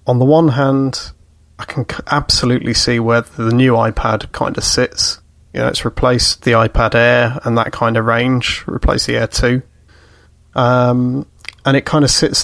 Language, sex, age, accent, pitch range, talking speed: English, male, 30-49, British, 115-130 Hz, 180 wpm